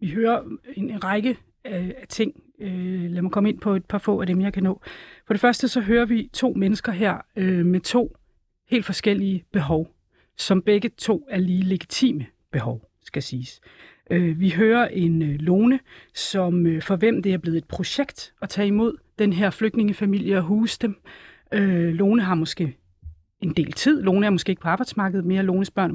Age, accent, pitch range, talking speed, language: 40-59, native, 180-220 Hz, 185 wpm, Danish